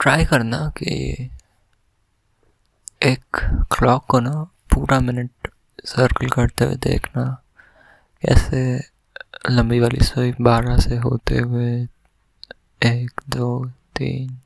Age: 20-39